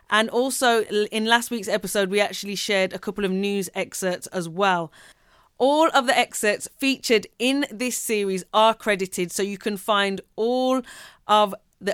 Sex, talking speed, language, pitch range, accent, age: female, 165 wpm, English, 190-230 Hz, British, 30-49